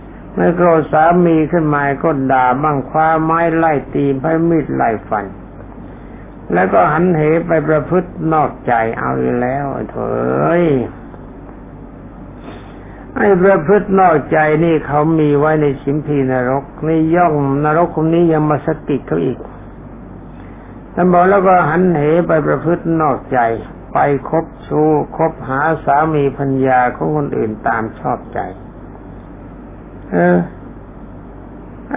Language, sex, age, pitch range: Thai, male, 60-79, 135-170 Hz